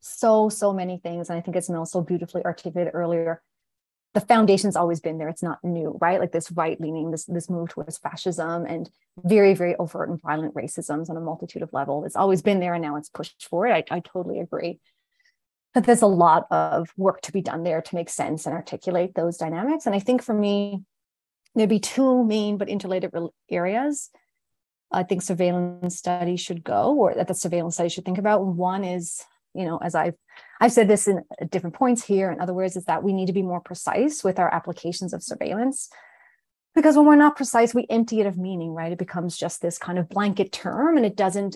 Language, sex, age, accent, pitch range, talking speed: English, female, 30-49, American, 170-215 Hz, 215 wpm